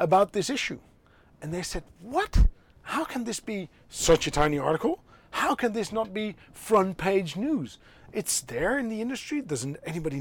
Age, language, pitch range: 40-59, English, 145-200 Hz